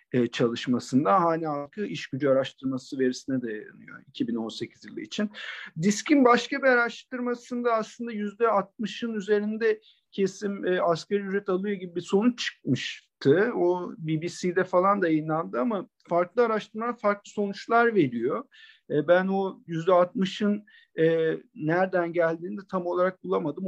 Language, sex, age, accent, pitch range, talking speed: Turkish, male, 50-69, native, 150-210 Hz, 125 wpm